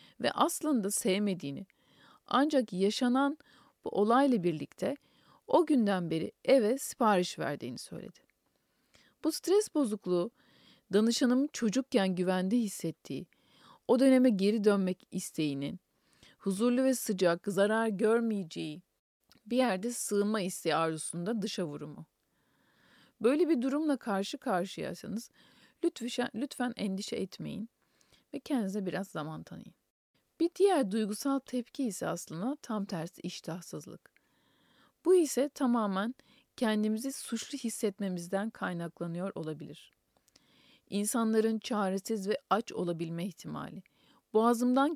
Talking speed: 100 wpm